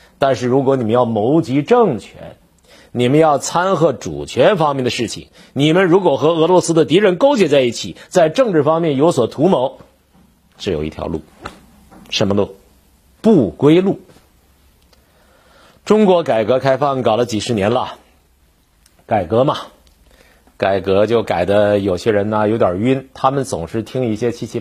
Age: 50-69